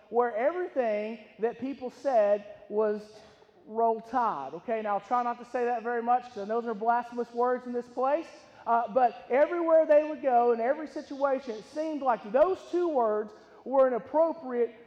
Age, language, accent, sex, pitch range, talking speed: 40-59, English, American, male, 210-265 Hz, 185 wpm